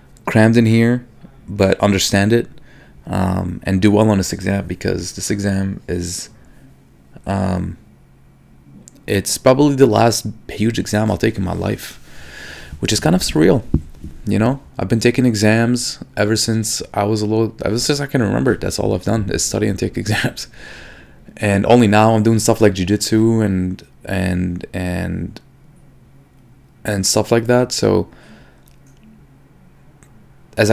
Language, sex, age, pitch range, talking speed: English, male, 20-39, 95-115 Hz, 150 wpm